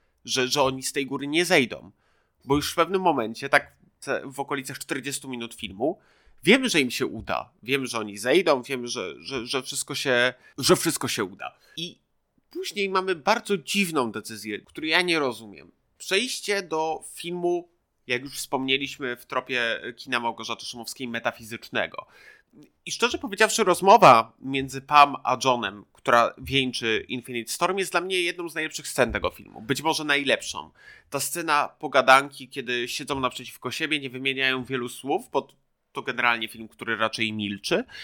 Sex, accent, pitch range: male, native, 120-165 Hz